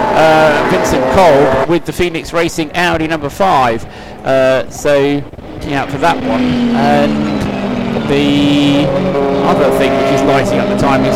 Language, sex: English, male